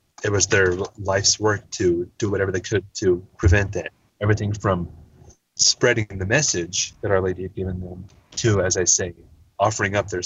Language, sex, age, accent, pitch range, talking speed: English, male, 30-49, American, 90-110 Hz, 180 wpm